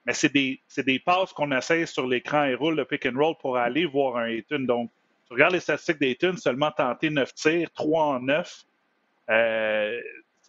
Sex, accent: male, Canadian